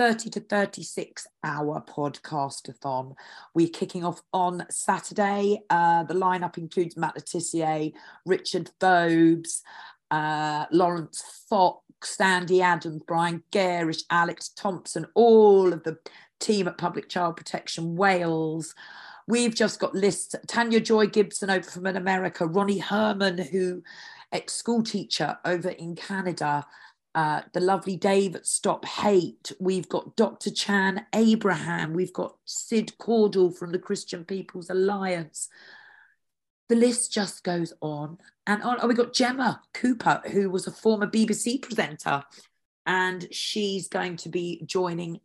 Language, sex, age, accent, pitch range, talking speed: English, female, 40-59, British, 165-205 Hz, 135 wpm